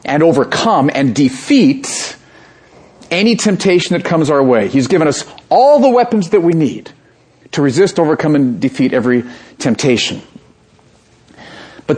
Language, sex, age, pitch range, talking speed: English, male, 40-59, 150-195 Hz, 135 wpm